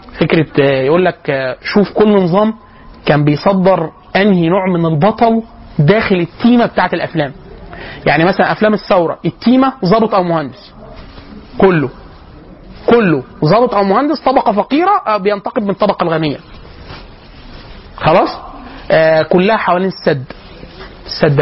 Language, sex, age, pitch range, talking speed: Arabic, male, 30-49, 165-230 Hz, 110 wpm